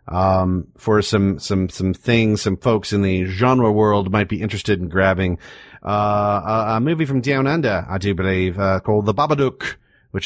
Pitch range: 95-125 Hz